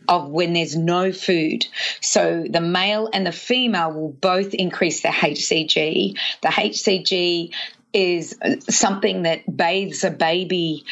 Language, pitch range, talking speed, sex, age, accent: English, 170-205 Hz, 130 wpm, female, 30-49, Australian